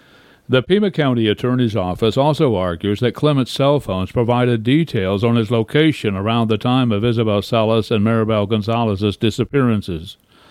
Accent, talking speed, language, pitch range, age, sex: American, 150 wpm, English, 105-130 Hz, 60-79, male